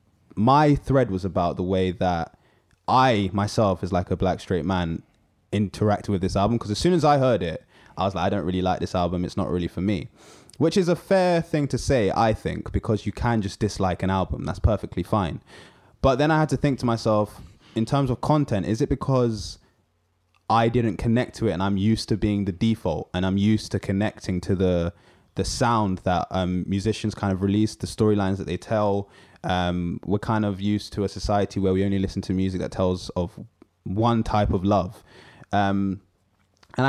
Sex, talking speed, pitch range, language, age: male, 210 wpm, 90-110 Hz, English, 20-39